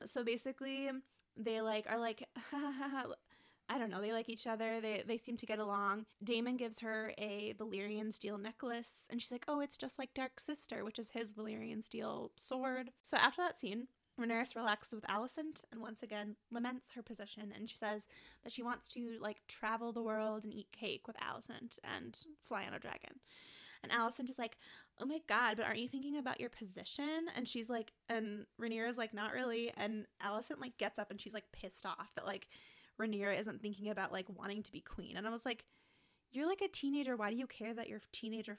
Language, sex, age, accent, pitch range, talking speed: English, female, 10-29, American, 215-250 Hz, 210 wpm